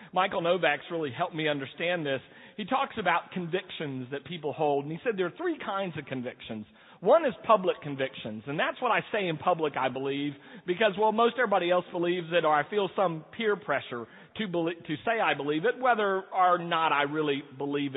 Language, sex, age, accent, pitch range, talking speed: English, male, 40-59, American, 140-195 Hz, 205 wpm